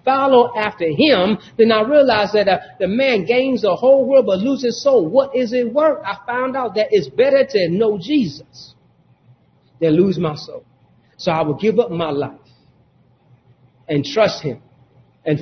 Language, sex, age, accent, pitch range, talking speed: English, male, 40-59, American, 145-220 Hz, 180 wpm